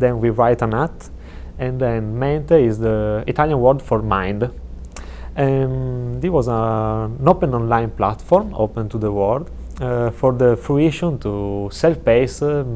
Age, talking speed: 30-49, 150 wpm